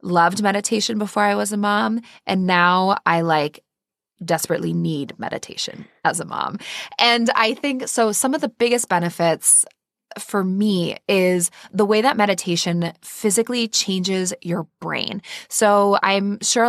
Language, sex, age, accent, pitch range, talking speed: English, female, 20-39, American, 175-215 Hz, 145 wpm